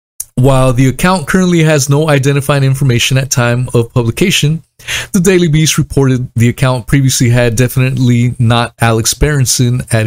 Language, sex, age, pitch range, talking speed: English, male, 30-49, 120-155 Hz, 150 wpm